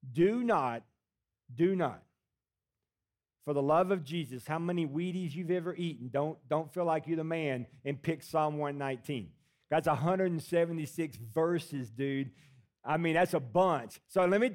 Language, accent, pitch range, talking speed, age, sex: English, American, 150-205 Hz, 155 wpm, 50-69, male